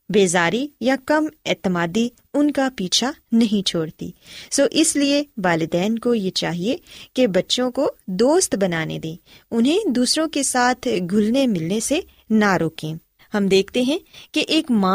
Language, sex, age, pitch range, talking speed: Urdu, female, 20-39, 185-265 Hz, 150 wpm